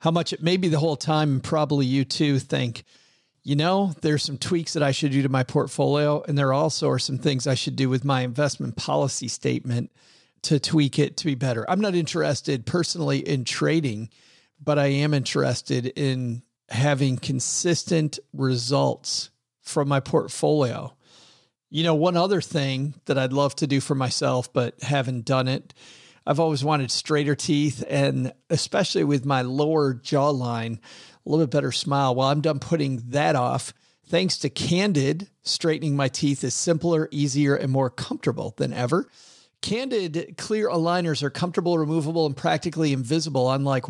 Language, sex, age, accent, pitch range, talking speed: English, male, 40-59, American, 130-160 Hz, 170 wpm